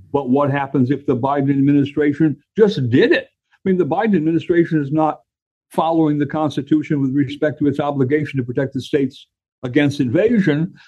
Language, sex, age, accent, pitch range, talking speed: English, male, 60-79, American, 120-165 Hz, 170 wpm